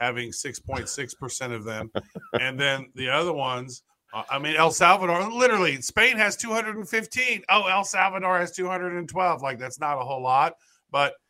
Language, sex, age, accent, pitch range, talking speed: English, male, 40-59, American, 140-180 Hz, 200 wpm